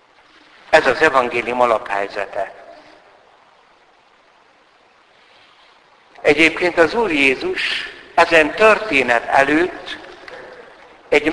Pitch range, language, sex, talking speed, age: 125-185 Hz, Hungarian, male, 65 wpm, 60-79